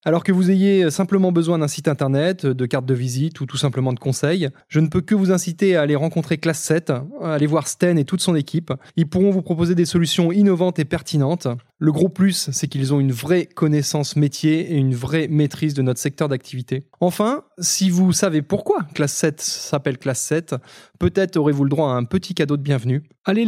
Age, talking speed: 20-39, 215 wpm